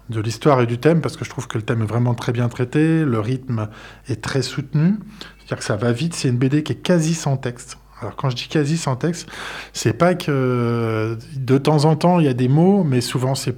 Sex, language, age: male, French, 20-39